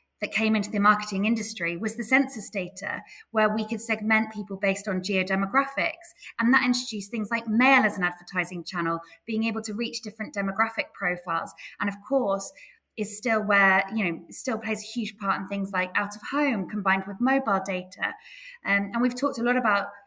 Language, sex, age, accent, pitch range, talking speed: English, female, 20-39, British, 195-225 Hz, 195 wpm